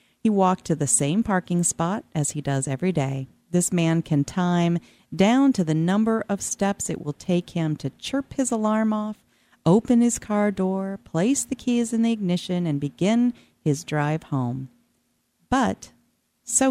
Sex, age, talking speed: female, 40-59, 170 wpm